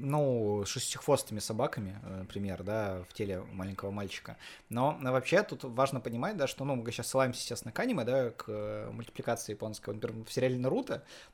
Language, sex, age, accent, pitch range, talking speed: Russian, male, 20-39, native, 110-135 Hz, 165 wpm